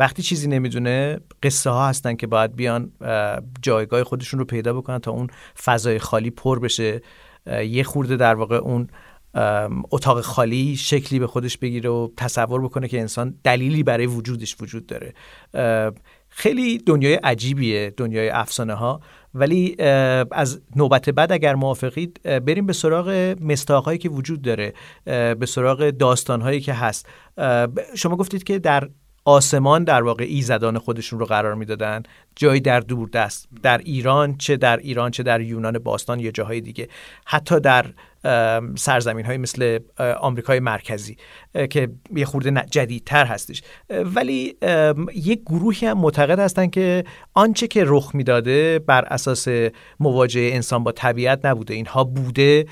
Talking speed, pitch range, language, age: 145 wpm, 115-145 Hz, Persian, 40-59